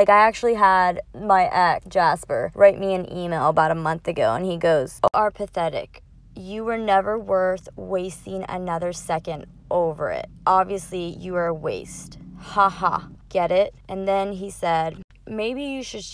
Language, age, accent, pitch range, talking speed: English, 20-39, American, 175-205 Hz, 175 wpm